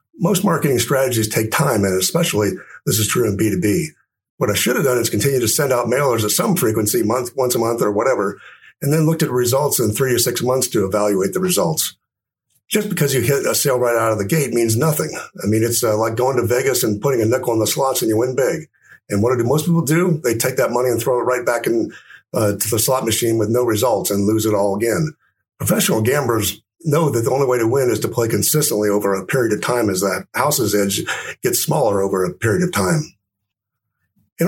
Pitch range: 105-140 Hz